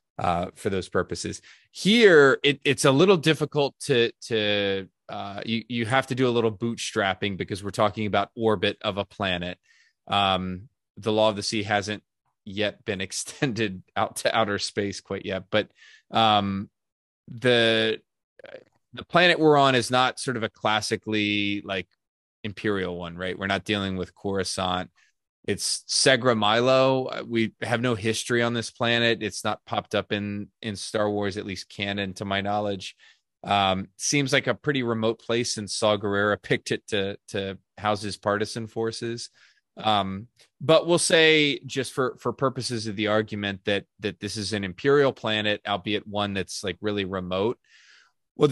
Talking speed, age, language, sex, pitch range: 160 wpm, 20-39, English, male, 100-120 Hz